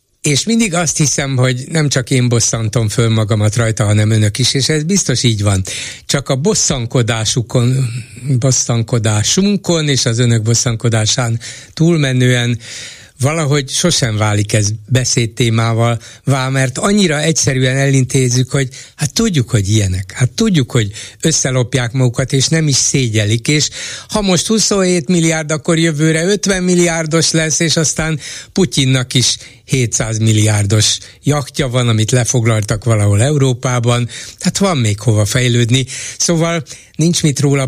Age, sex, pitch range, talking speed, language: 60-79, male, 115-155 Hz, 135 wpm, Hungarian